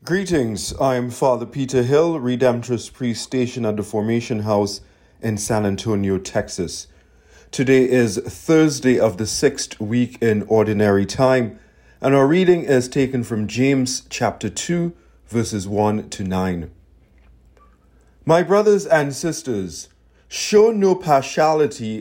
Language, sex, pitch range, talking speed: English, male, 105-140 Hz, 130 wpm